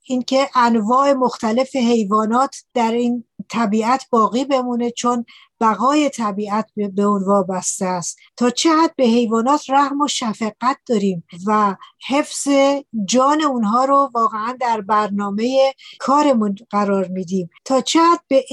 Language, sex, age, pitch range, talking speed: Persian, female, 60-79, 210-255 Hz, 125 wpm